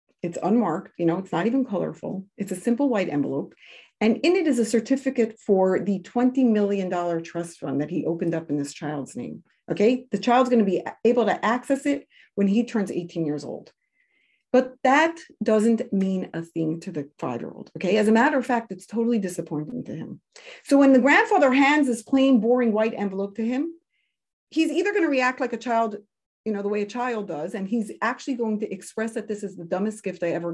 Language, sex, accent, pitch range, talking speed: English, female, American, 180-255 Hz, 215 wpm